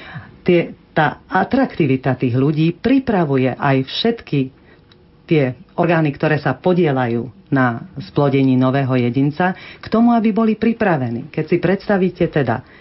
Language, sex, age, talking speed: Slovak, female, 40-59, 115 wpm